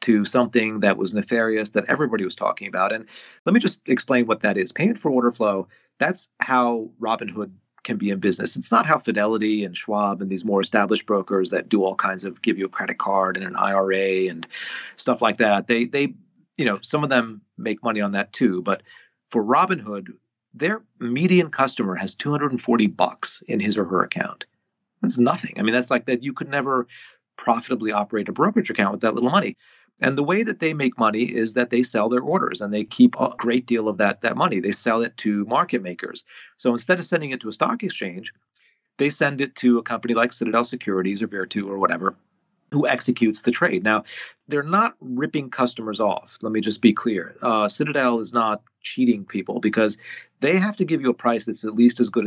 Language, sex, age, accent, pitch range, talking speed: English, male, 40-59, American, 105-130 Hz, 215 wpm